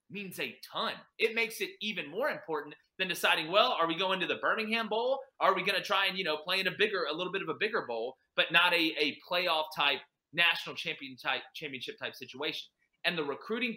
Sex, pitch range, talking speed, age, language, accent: male, 165-225 Hz, 230 wpm, 30-49, English, American